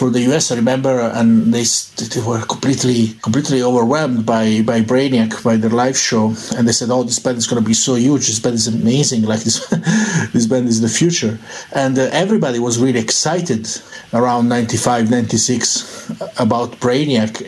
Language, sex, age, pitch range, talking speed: English, male, 50-69, 115-145 Hz, 180 wpm